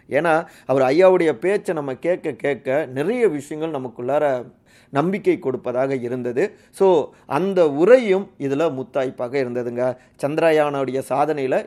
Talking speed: 110 wpm